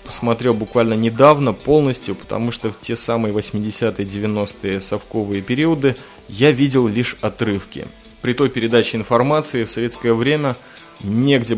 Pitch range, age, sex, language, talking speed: 110-135 Hz, 20-39, male, Russian, 130 wpm